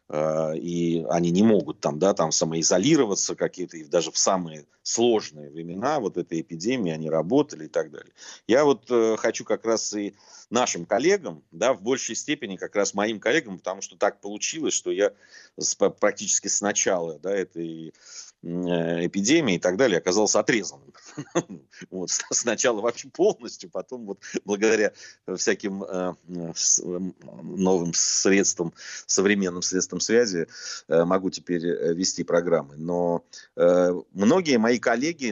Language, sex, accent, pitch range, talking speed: Russian, male, native, 85-115 Hz, 140 wpm